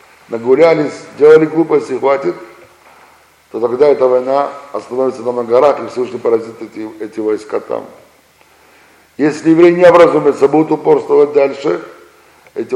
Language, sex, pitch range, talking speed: Russian, male, 120-170 Hz, 120 wpm